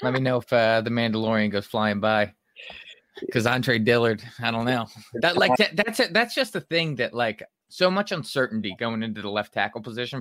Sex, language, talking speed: male, English, 205 wpm